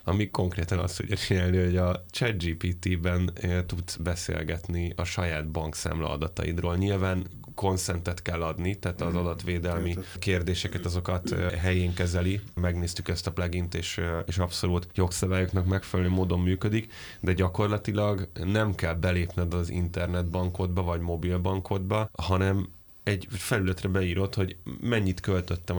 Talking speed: 120 wpm